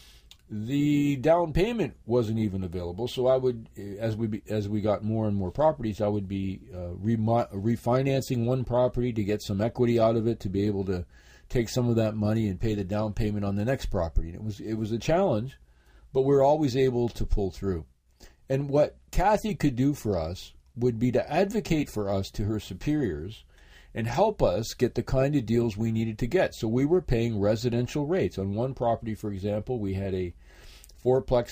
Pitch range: 95-120 Hz